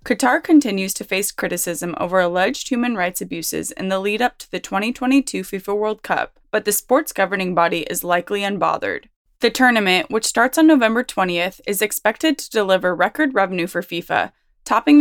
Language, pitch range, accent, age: English, 185-240 Hz, American, 20-39